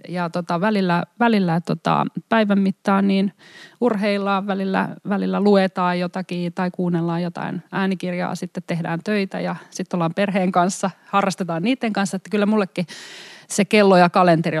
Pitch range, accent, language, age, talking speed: 165-195 Hz, native, Finnish, 30-49, 130 wpm